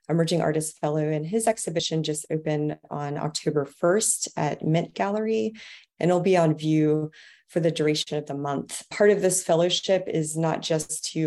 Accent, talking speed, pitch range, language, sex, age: American, 175 wpm, 150-175 Hz, English, female, 30-49